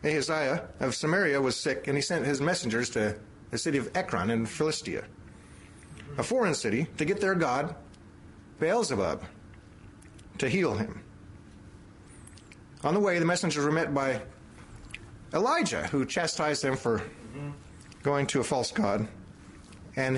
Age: 40-59